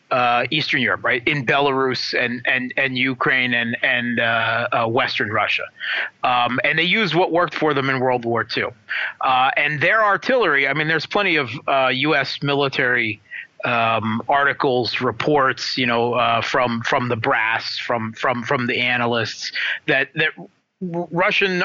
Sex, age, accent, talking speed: male, 30-49, American, 165 wpm